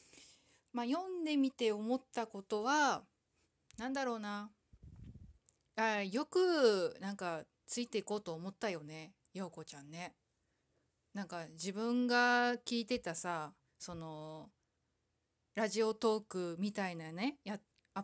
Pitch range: 180-235 Hz